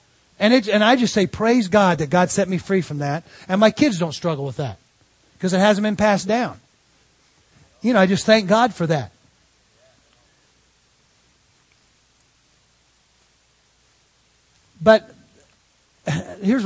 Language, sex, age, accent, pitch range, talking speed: English, male, 40-59, American, 165-210 Hz, 135 wpm